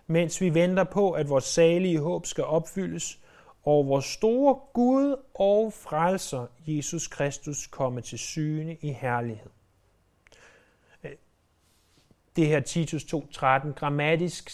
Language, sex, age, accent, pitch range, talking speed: Danish, male, 30-49, native, 135-180 Hz, 115 wpm